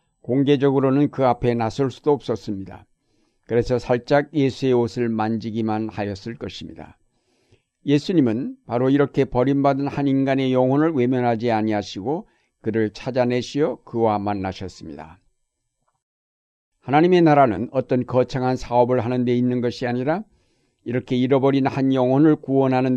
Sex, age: male, 60-79